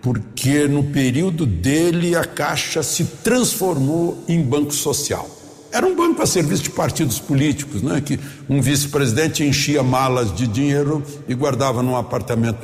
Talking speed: 145 wpm